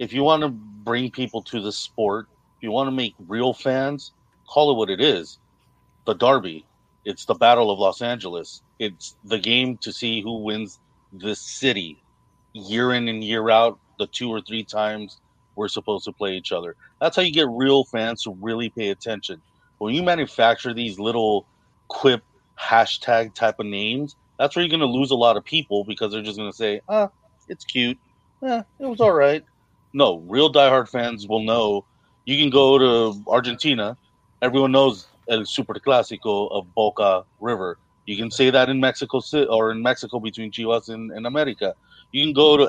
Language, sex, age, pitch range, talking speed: English, male, 30-49, 110-135 Hz, 190 wpm